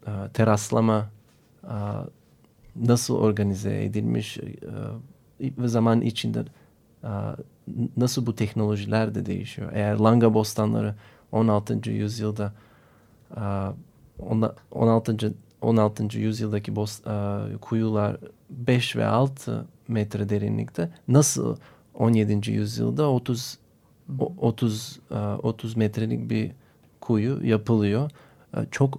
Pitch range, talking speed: 105-125 Hz, 75 wpm